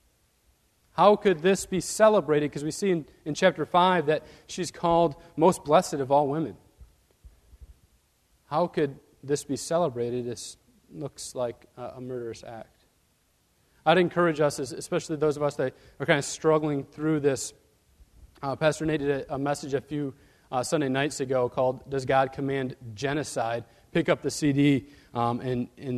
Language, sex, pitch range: English, male, 125-160 Hz